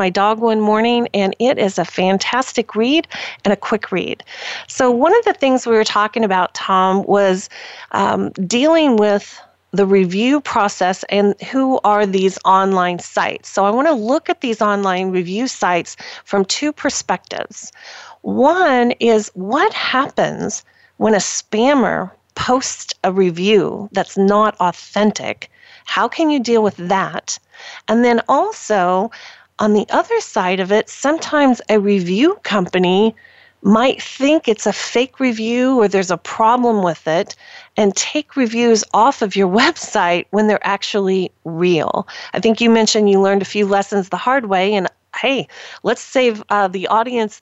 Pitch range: 190-240 Hz